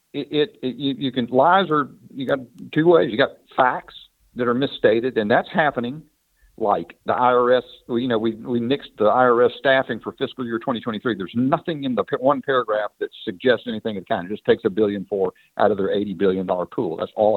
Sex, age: male, 50-69